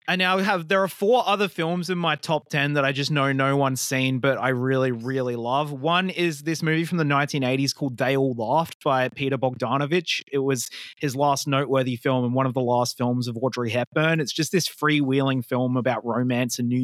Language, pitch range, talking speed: English, 125-155 Hz, 220 wpm